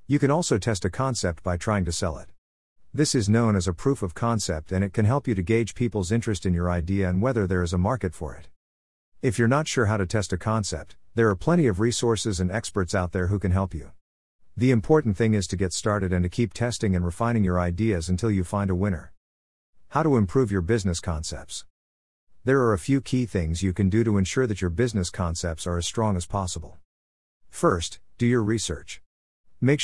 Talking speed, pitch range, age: 225 wpm, 90-115 Hz, 50-69